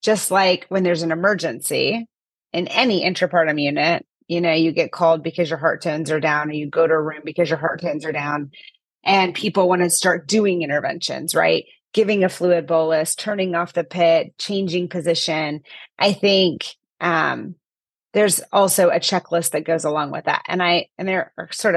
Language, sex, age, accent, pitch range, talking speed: English, female, 30-49, American, 165-190 Hz, 190 wpm